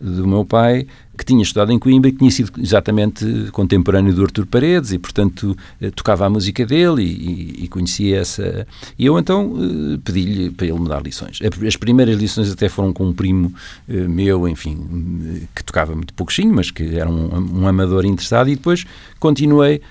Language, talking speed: Portuguese, 180 wpm